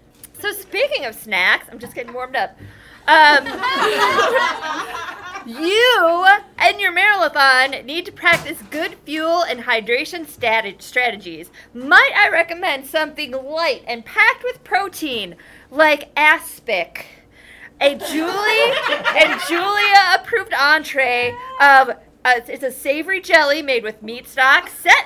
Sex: female